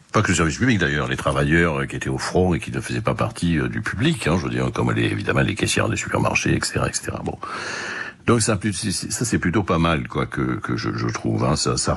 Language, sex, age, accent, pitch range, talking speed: French, male, 60-79, French, 75-100 Hz, 260 wpm